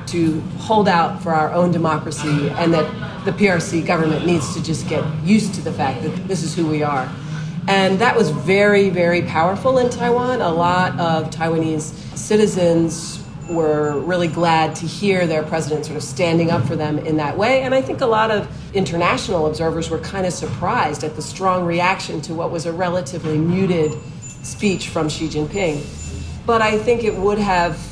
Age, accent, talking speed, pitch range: 40-59, American, 185 wpm, 155-185 Hz